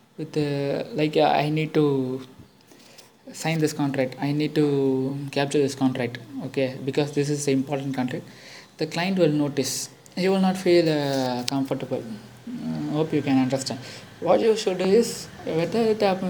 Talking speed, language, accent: 165 wpm, Tamil, native